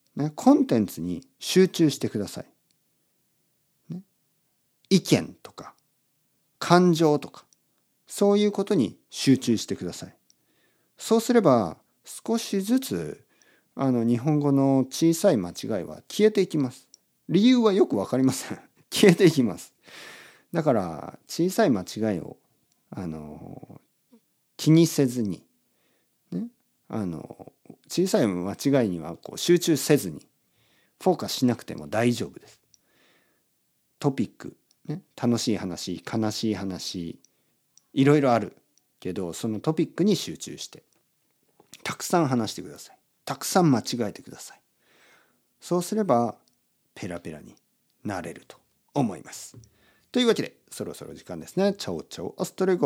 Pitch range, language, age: 120-200 Hz, Japanese, 50-69